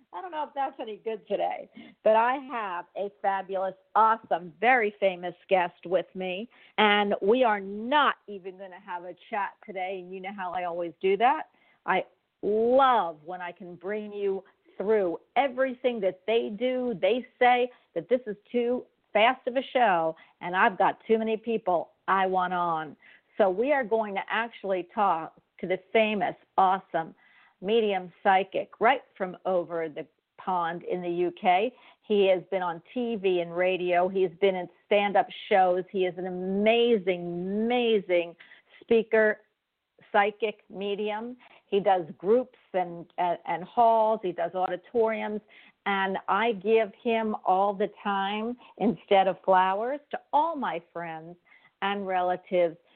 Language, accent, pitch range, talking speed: English, American, 180-225 Hz, 155 wpm